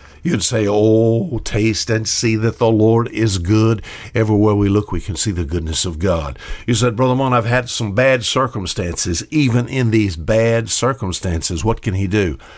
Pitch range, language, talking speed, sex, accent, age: 95-120 Hz, English, 185 wpm, male, American, 60-79